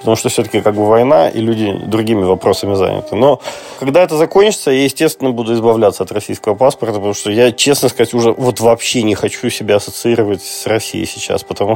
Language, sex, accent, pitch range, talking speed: Russian, male, native, 105-135 Hz, 195 wpm